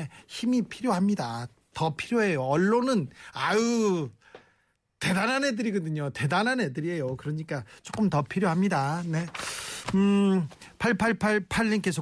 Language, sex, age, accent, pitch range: Korean, male, 40-59, native, 145-210 Hz